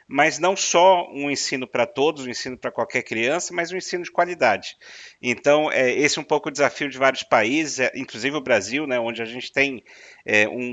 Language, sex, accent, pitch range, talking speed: Portuguese, male, Brazilian, 120-140 Hz, 200 wpm